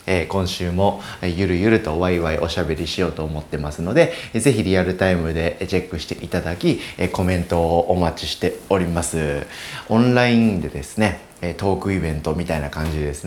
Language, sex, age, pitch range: Japanese, male, 30-49, 85-110 Hz